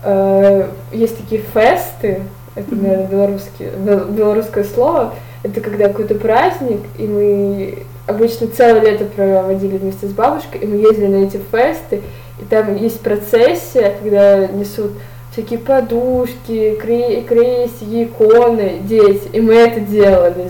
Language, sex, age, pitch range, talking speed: Russian, female, 20-39, 200-245 Hz, 120 wpm